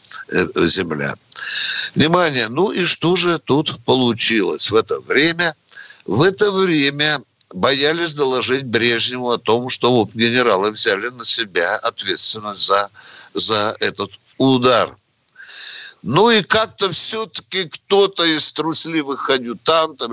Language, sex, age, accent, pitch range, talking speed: Russian, male, 60-79, native, 125-195 Hz, 115 wpm